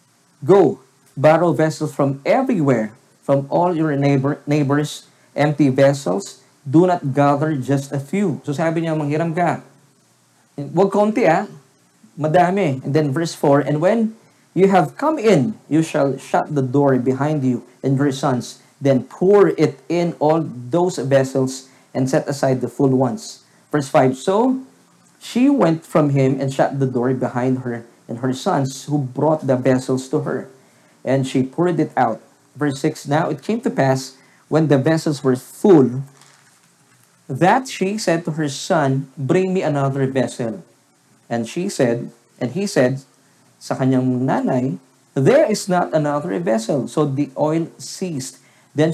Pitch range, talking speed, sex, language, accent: 130-155 Hz, 160 wpm, male, English, Filipino